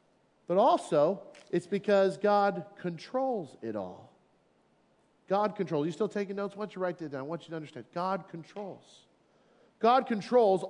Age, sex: 40-59, male